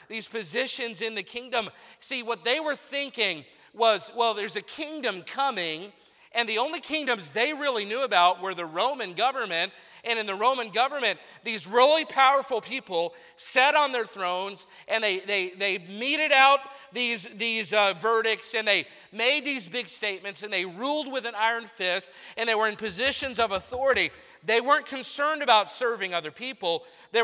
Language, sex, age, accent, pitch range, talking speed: English, male, 40-59, American, 210-270 Hz, 175 wpm